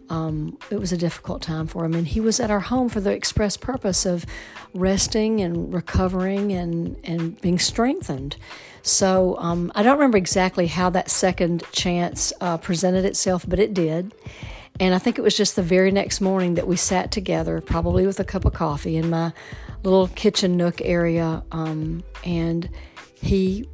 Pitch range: 165-190 Hz